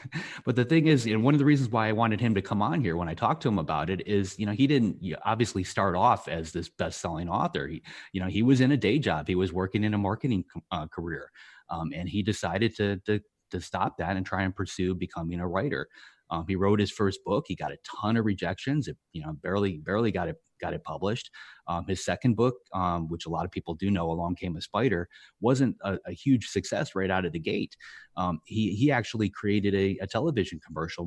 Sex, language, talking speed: male, English, 245 wpm